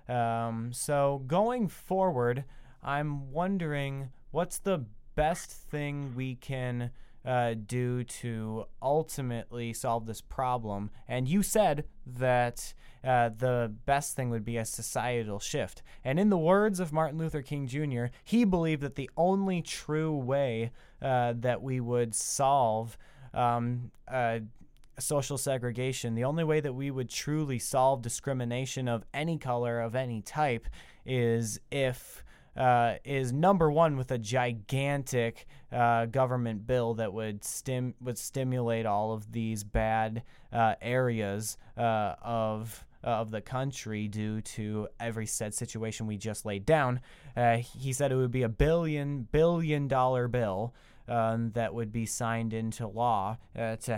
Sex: male